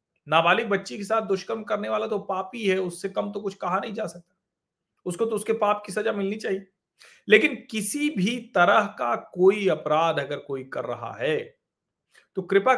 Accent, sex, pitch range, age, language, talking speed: native, male, 175-225 Hz, 40-59, Hindi, 190 wpm